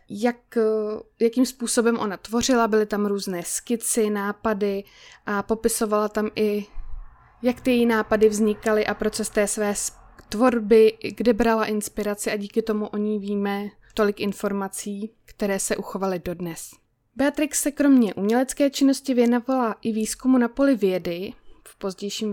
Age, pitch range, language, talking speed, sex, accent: 20-39, 210-240 Hz, Czech, 140 wpm, female, native